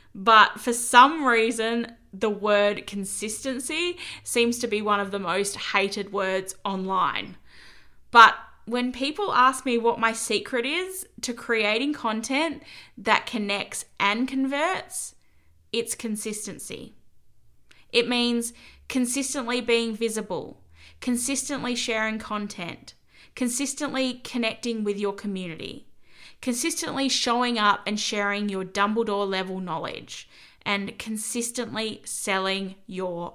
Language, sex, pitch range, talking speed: English, female, 200-255 Hz, 110 wpm